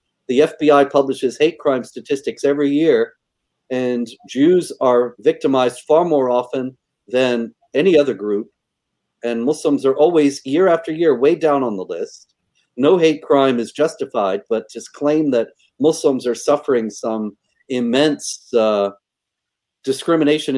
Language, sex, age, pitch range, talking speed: English, male, 40-59, 125-170 Hz, 135 wpm